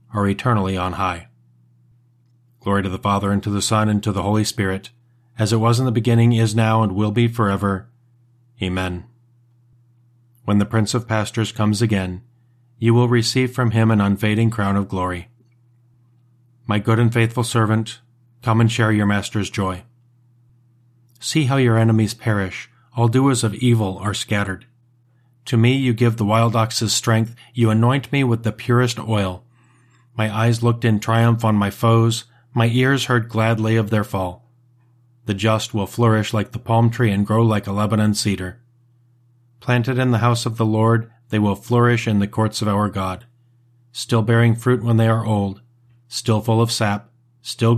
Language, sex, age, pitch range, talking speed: English, male, 40-59, 105-120 Hz, 175 wpm